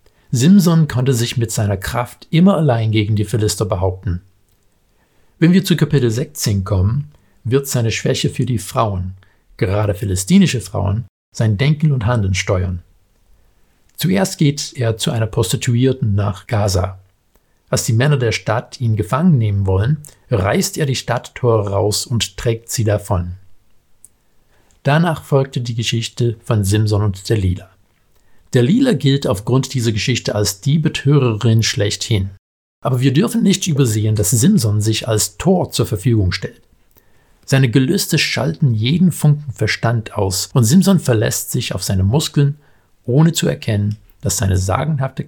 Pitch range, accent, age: 100-135 Hz, German, 60-79